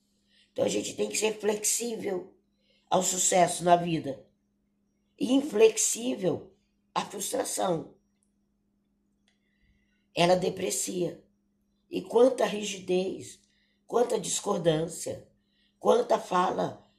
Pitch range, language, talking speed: 125-180 Hz, Portuguese, 85 wpm